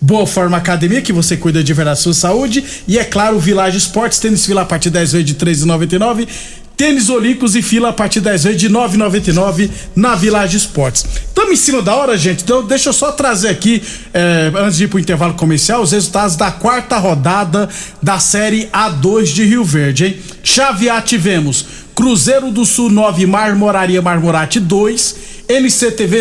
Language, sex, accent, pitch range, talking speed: Portuguese, male, Brazilian, 180-230 Hz, 180 wpm